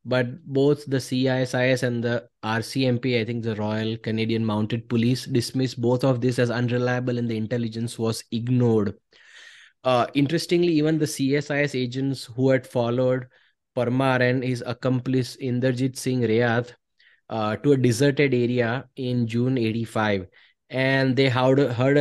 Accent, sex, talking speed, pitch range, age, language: Indian, male, 140 wpm, 120-135 Hz, 20-39, English